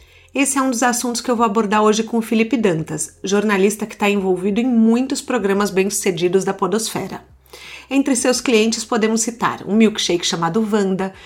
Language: Portuguese